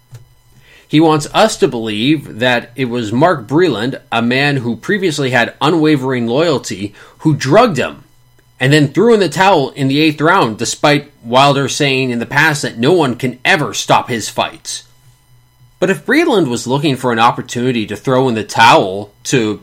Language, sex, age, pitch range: English, male, 30-49, 120-155 Hz